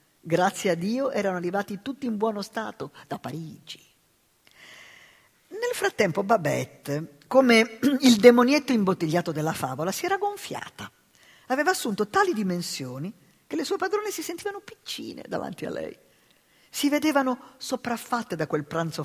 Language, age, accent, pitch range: Italian, 50-69, native, 150-225 Hz